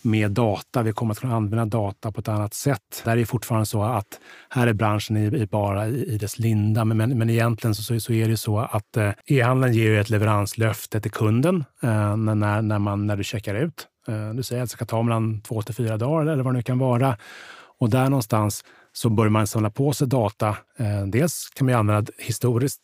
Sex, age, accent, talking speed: male, 30-49, Norwegian, 240 wpm